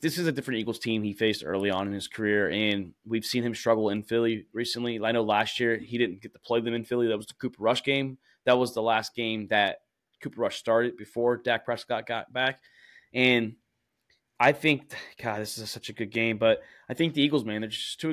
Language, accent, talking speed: English, American, 240 wpm